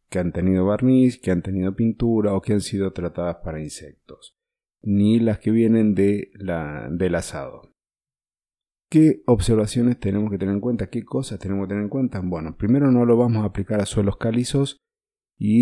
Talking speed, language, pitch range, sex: 175 wpm, Spanish, 95-120 Hz, male